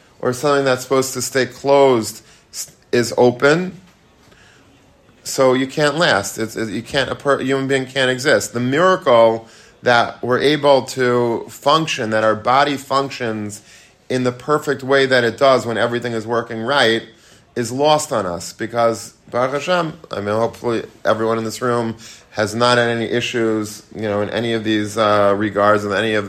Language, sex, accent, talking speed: English, male, American, 175 wpm